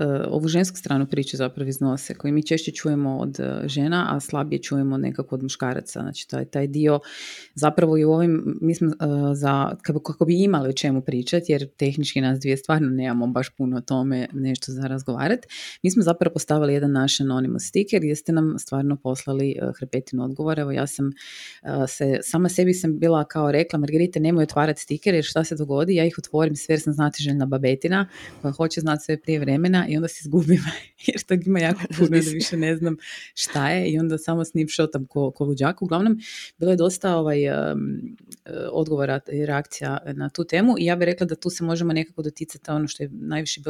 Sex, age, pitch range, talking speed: female, 30-49, 140-165 Hz, 190 wpm